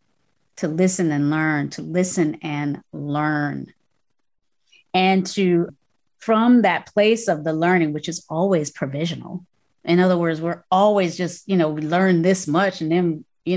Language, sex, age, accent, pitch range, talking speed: English, female, 30-49, American, 165-210 Hz, 155 wpm